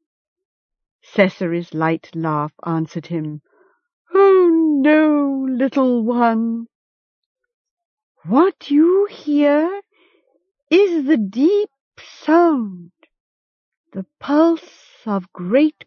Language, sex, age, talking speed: English, female, 60-79, 75 wpm